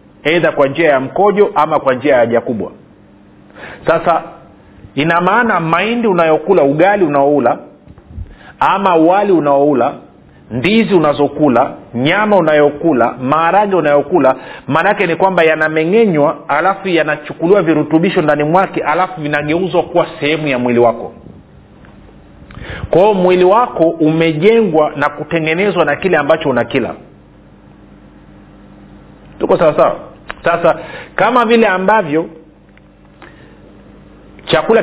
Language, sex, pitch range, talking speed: Swahili, male, 145-185 Hz, 105 wpm